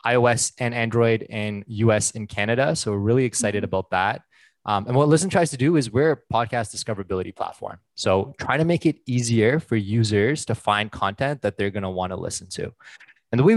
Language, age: English, 20-39